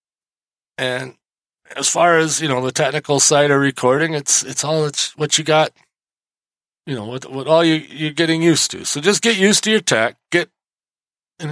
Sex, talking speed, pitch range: male, 195 wpm, 120-160 Hz